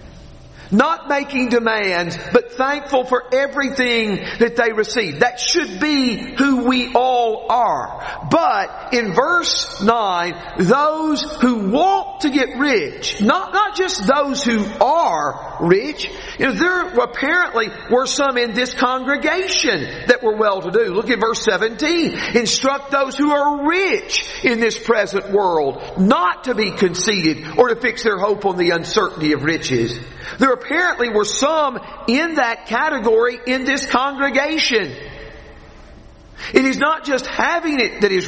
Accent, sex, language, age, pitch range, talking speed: American, male, English, 50-69, 215-290 Hz, 145 wpm